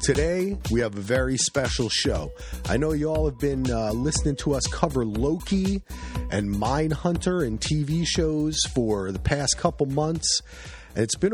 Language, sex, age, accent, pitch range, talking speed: English, male, 30-49, American, 110-150 Hz, 170 wpm